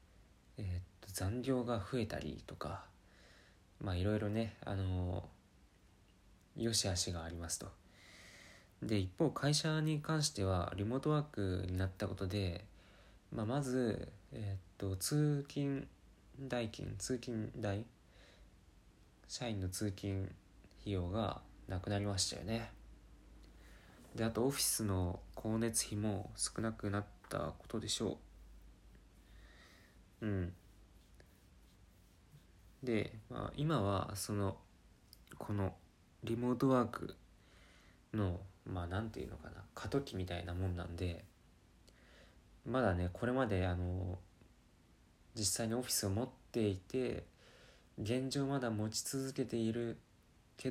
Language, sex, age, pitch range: Japanese, male, 20-39, 90-115 Hz